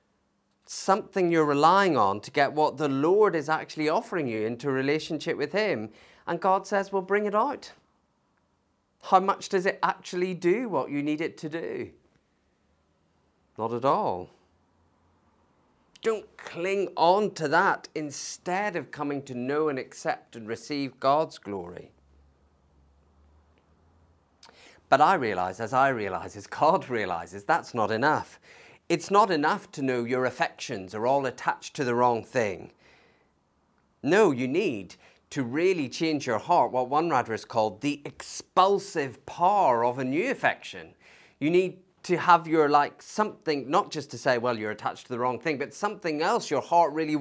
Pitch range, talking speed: 115-180 Hz, 160 wpm